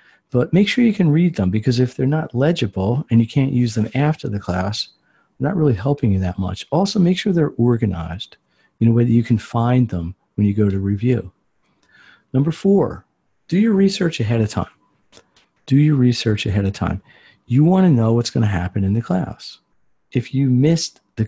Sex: male